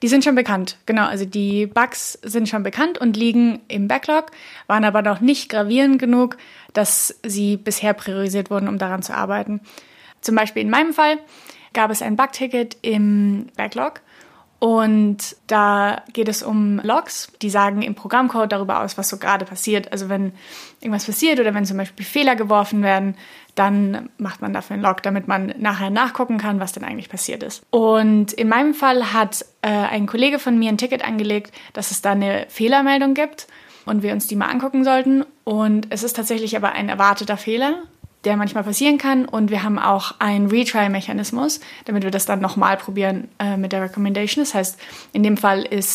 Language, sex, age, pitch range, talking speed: German, female, 20-39, 200-245 Hz, 190 wpm